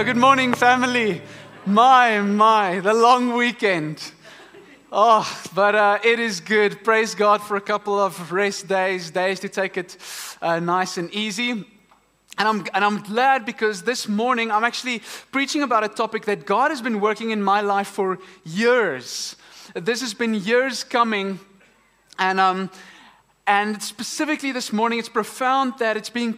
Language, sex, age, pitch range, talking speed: English, male, 20-39, 200-245 Hz, 160 wpm